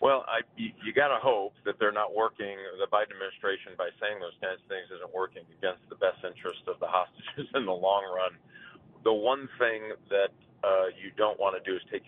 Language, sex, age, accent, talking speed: English, male, 40-59, American, 220 wpm